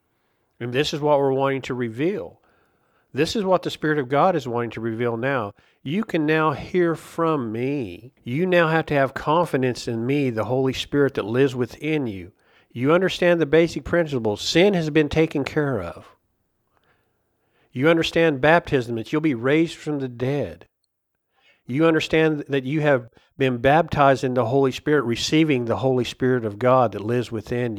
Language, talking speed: English, 175 wpm